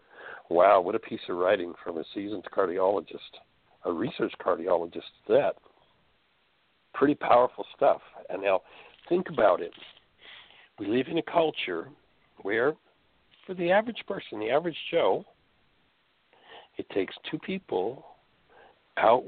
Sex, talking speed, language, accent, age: male, 125 wpm, English, American, 60-79